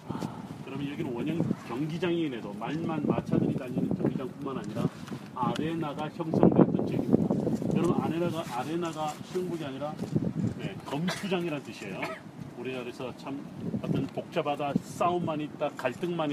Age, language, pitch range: 40-59, Korean, 145-175 Hz